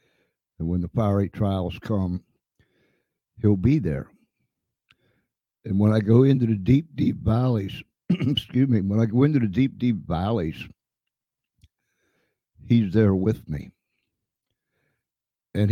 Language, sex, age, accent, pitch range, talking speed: English, male, 60-79, American, 95-125 Hz, 125 wpm